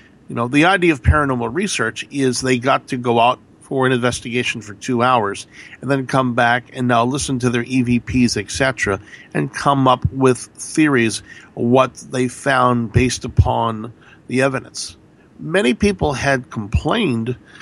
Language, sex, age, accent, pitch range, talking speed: English, male, 50-69, American, 120-150 Hz, 160 wpm